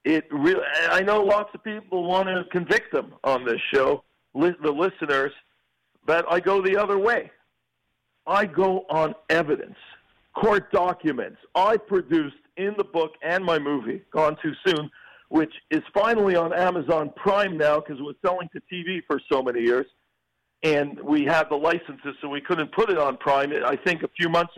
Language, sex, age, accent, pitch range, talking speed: English, male, 50-69, American, 150-195 Hz, 180 wpm